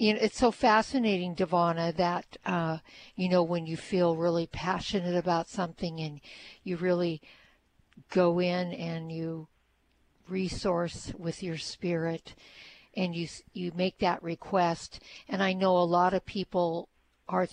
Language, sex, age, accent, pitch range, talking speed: English, female, 60-79, American, 175-215 Hz, 145 wpm